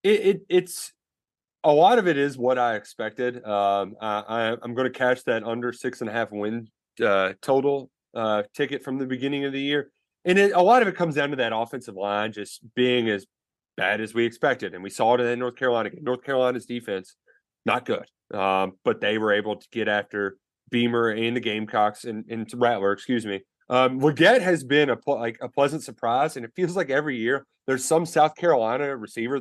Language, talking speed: English, 210 wpm